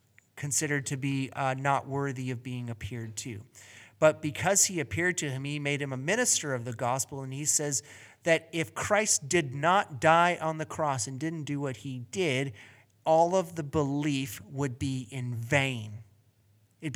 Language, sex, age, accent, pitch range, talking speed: English, male, 30-49, American, 120-155 Hz, 180 wpm